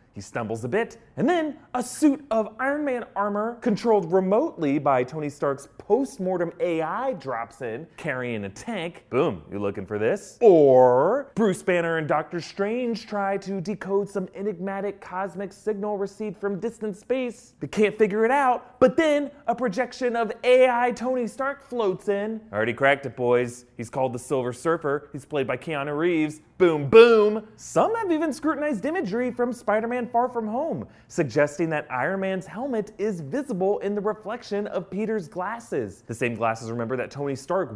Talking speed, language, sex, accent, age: 170 wpm, English, male, American, 30-49